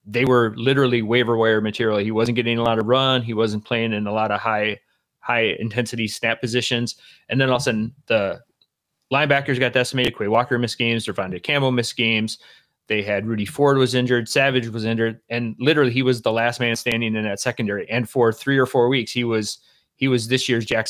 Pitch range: 110-125 Hz